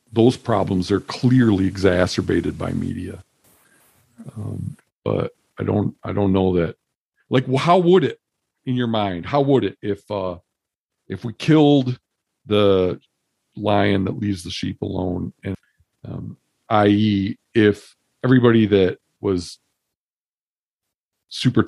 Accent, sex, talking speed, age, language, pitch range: American, male, 125 wpm, 50-69, English, 95-115 Hz